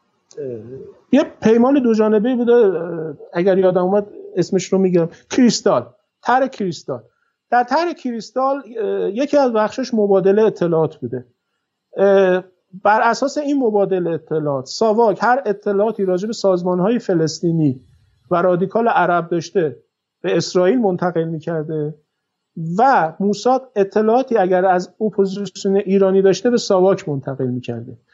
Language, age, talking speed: Persian, 50-69, 115 wpm